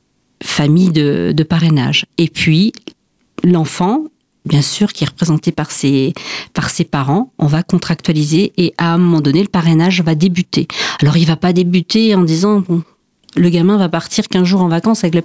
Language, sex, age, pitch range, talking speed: French, female, 40-59, 165-210 Hz, 180 wpm